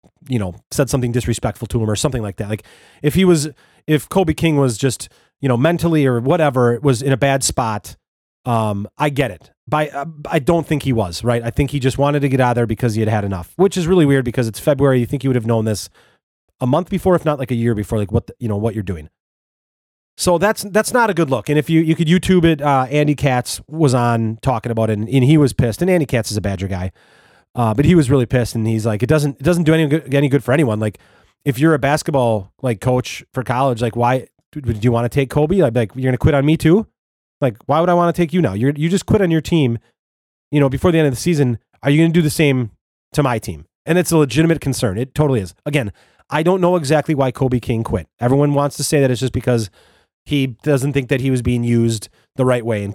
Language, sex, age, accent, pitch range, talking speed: English, male, 30-49, American, 115-150 Hz, 270 wpm